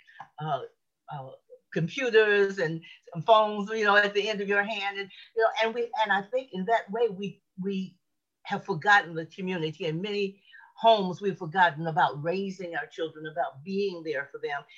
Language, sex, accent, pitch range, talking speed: English, female, American, 175-225 Hz, 185 wpm